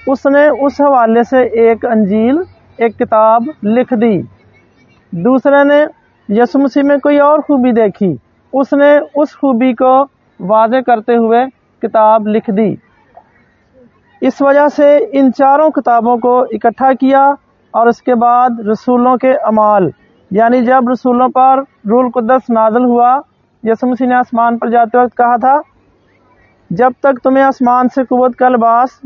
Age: 40-59